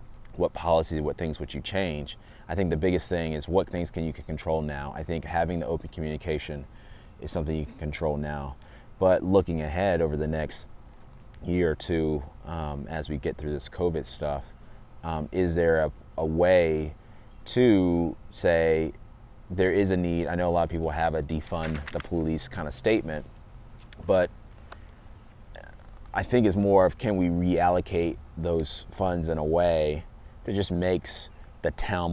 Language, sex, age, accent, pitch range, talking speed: English, male, 30-49, American, 80-95 Hz, 175 wpm